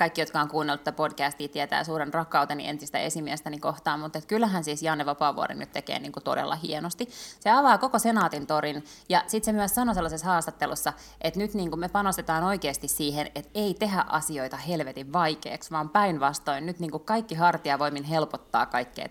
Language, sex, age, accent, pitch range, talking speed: Finnish, female, 20-39, native, 145-175 Hz, 175 wpm